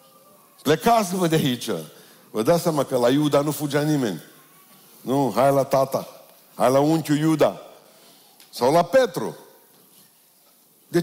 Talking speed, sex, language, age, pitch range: 130 wpm, male, Romanian, 50-69, 110-145 Hz